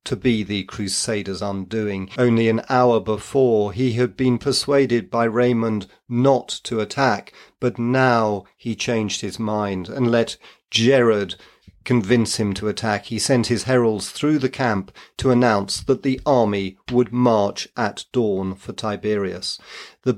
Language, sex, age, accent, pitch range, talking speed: English, male, 40-59, British, 105-130 Hz, 150 wpm